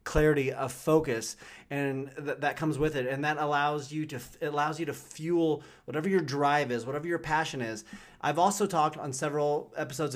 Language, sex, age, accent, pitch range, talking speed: English, male, 30-49, American, 140-170 Hz, 195 wpm